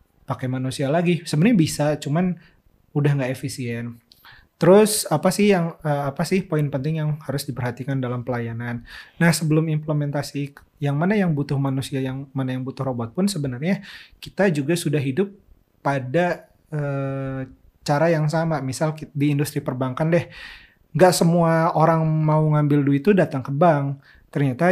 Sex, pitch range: male, 135-165 Hz